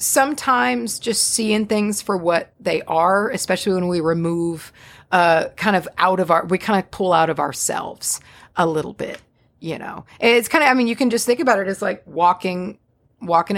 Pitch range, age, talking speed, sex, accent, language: 165-210 Hz, 30-49, 200 wpm, female, American, English